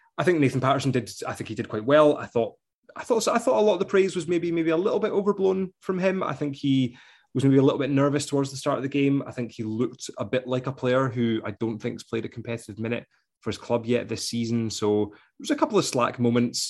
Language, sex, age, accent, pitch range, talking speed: English, male, 20-39, British, 105-130 Hz, 285 wpm